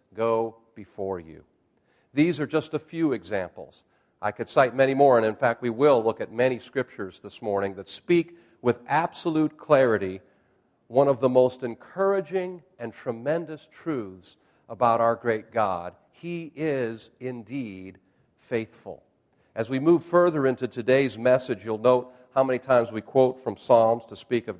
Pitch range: 115-165 Hz